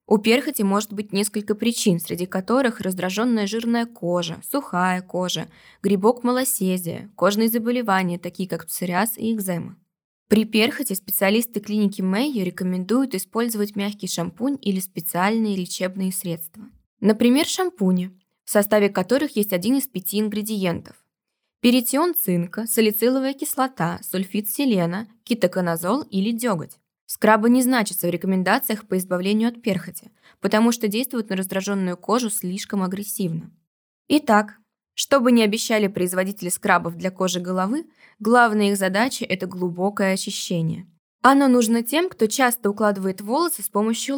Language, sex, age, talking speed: Russian, female, 20-39, 130 wpm